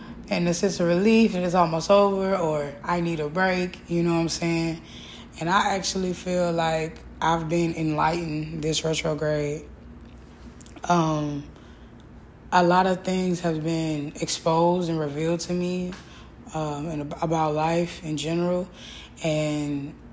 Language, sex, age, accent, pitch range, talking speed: English, female, 20-39, American, 155-180 Hz, 145 wpm